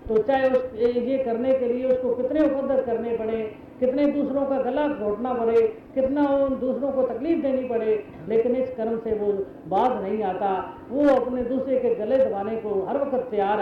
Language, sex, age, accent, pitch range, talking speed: Hindi, female, 40-59, native, 215-265 Hz, 190 wpm